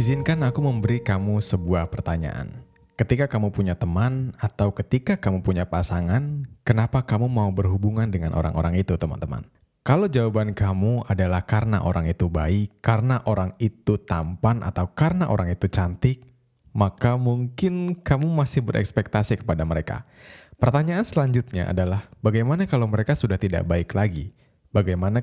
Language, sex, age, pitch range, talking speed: Indonesian, male, 20-39, 95-125 Hz, 140 wpm